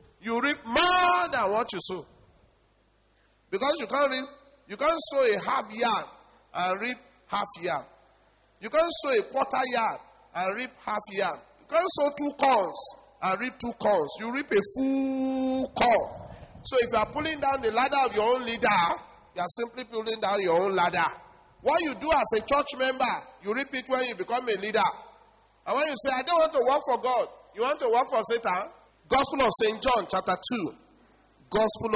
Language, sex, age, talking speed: English, male, 40-59, 195 wpm